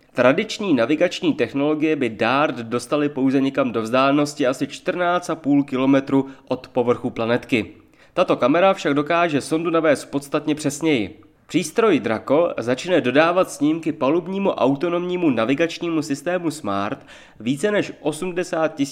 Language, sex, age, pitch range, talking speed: Czech, male, 30-49, 130-180 Hz, 115 wpm